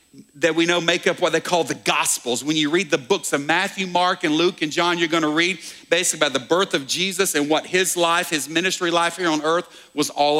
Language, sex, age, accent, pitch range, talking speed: English, male, 50-69, American, 160-210 Hz, 255 wpm